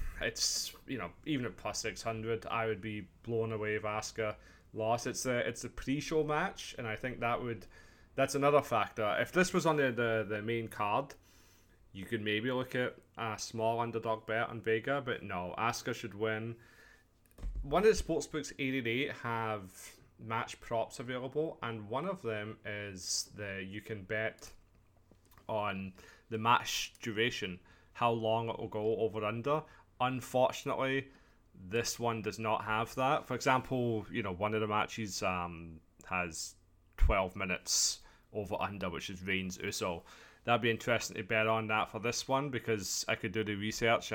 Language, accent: English, British